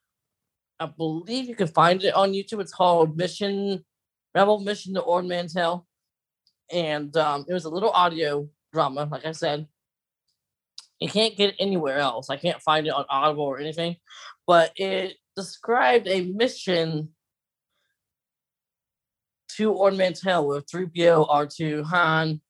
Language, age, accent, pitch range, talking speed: English, 20-39, American, 150-195 Hz, 145 wpm